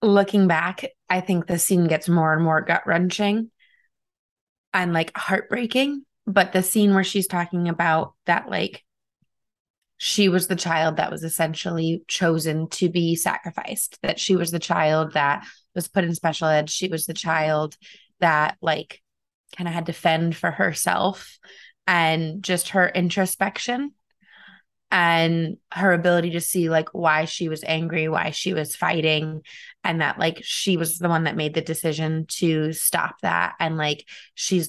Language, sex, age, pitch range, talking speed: English, female, 20-39, 160-185 Hz, 160 wpm